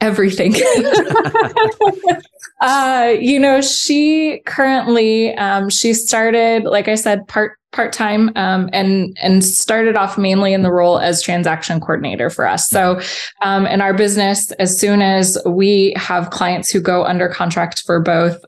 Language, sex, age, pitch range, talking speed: English, female, 20-39, 175-210 Hz, 150 wpm